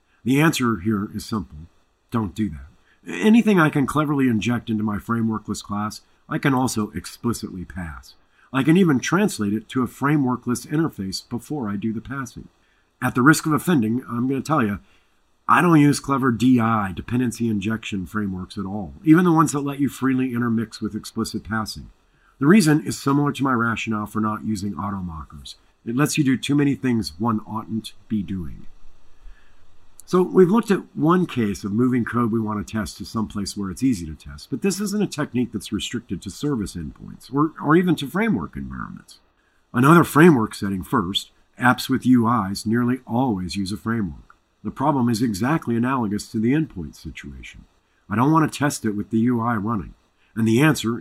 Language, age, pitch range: English, 50-69, 100-135 Hz